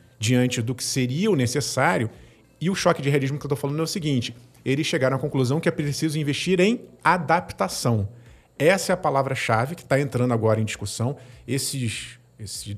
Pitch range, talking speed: 120-155 Hz, 190 wpm